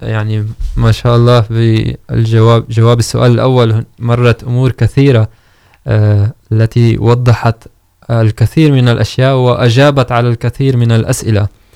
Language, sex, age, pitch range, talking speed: Urdu, male, 20-39, 110-125 Hz, 105 wpm